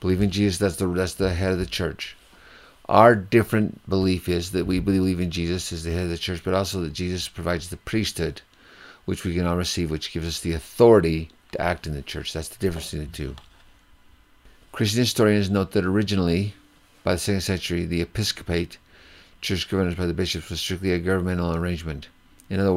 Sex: male